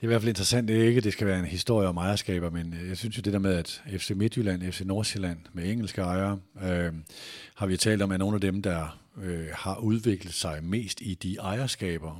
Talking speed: 235 wpm